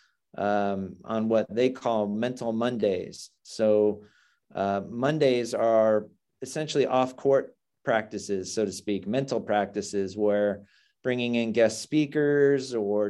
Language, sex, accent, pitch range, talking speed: English, male, American, 105-125 Hz, 115 wpm